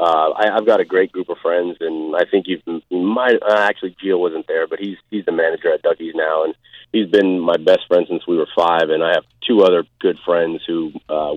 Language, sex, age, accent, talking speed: English, male, 30-49, American, 240 wpm